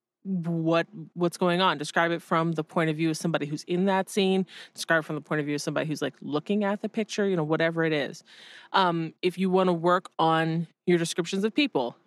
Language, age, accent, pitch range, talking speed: English, 20-39, American, 155-190 Hz, 235 wpm